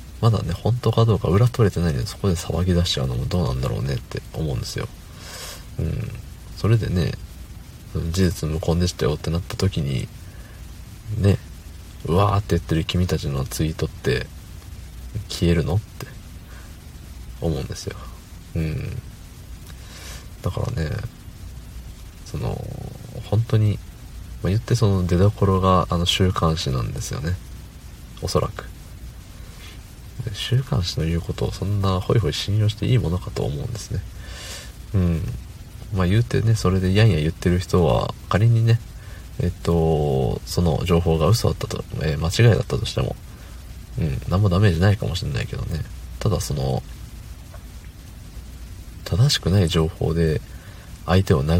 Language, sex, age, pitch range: Japanese, male, 40-59, 85-105 Hz